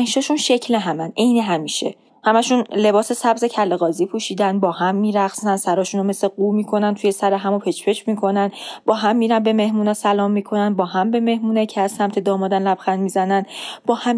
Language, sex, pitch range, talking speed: Persian, female, 195-245 Hz, 180 wpm